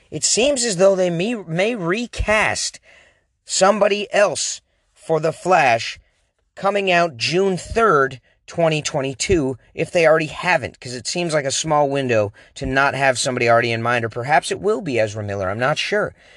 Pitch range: 130-185 Hz